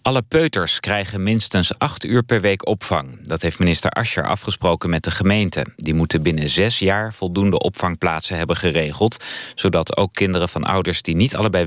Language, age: Dutch, 30-49